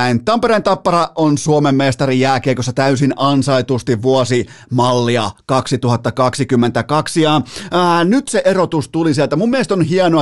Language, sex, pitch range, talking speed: Finnish, male, 140-185 Hz, 125 wpm